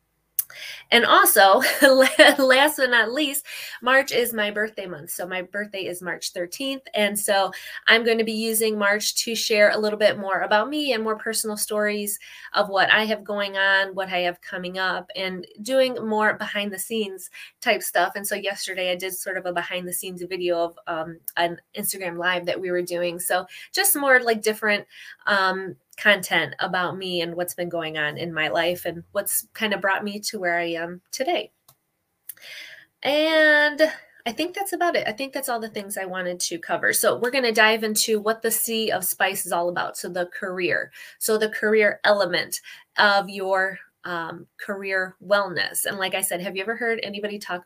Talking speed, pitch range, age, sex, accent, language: 200 wpm, 180-225 Hz, 20-39, female, American, English